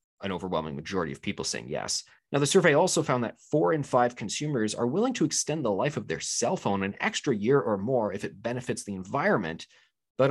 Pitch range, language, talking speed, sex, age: 100-125 Hz, English, 220 wpm, male, 30-49